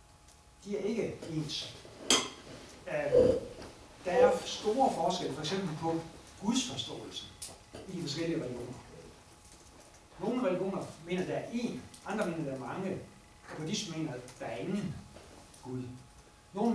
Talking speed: 130 wpm